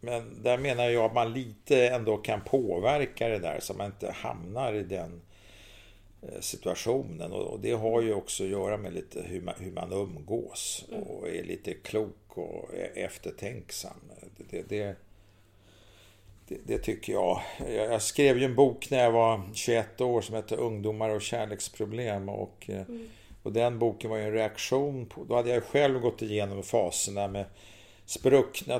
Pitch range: 100-120 Hz